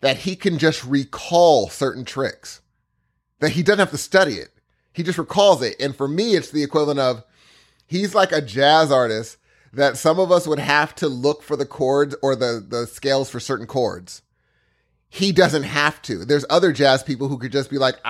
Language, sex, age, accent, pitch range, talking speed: English, male, 30-49, American, 130-160 Hz, 200 wpm